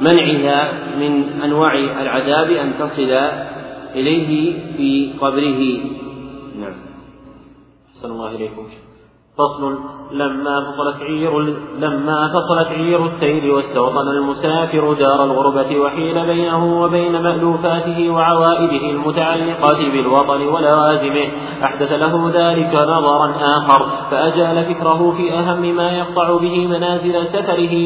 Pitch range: 145-170 Hz